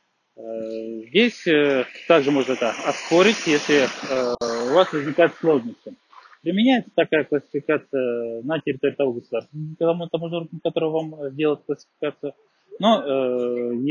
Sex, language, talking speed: male, Russian, 110 wpm